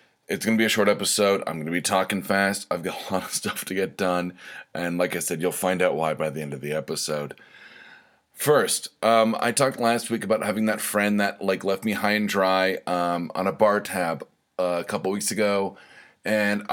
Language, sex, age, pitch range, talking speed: English, male, 30-49, 95-115 Hz, 225 wpm